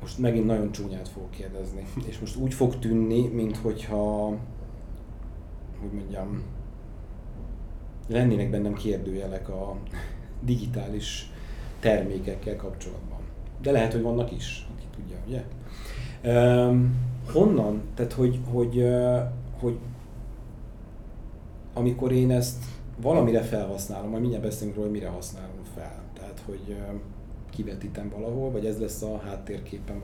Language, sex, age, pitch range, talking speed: Hungarian, male, 30-49, 105-120 Hz, 110 wpm